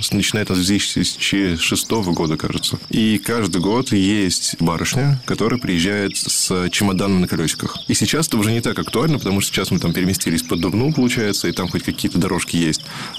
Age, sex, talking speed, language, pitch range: 20-39, male, 180 wpm, Russian, 85-105 Hz